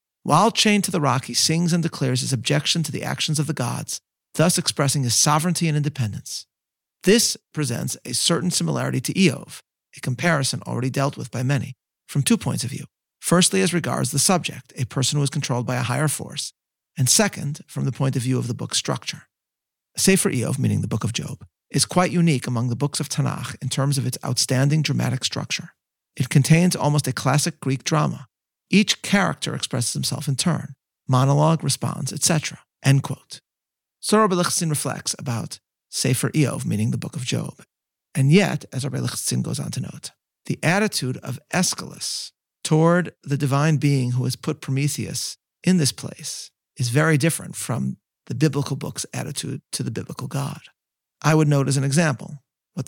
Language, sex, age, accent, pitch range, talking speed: English, male, 40-59, American, 135-165 Hz, 185 wpm